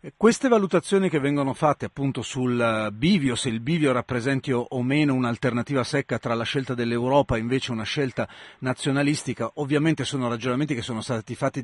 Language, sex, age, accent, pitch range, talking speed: Italian, male, 40-59, native, 125-170 Hz, 165 wpm